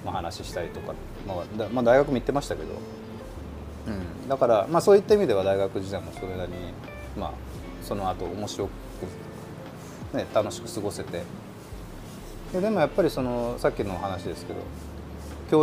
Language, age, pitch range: Japanese, 30-49, 95-140 Hz